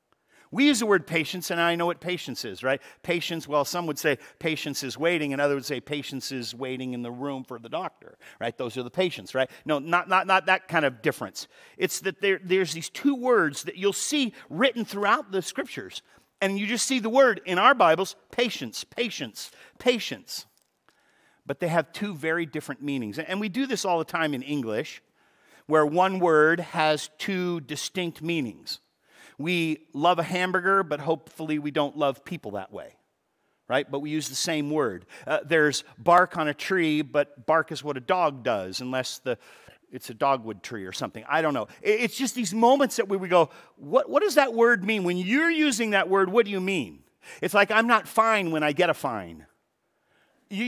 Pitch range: 150-225 Hz